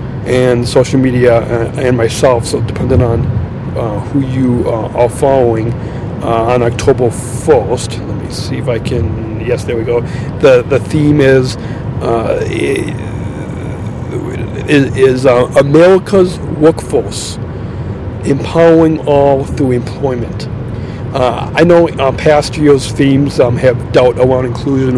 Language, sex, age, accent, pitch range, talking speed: English, male, 50-69, American, 120-140 Hz, 125 wpm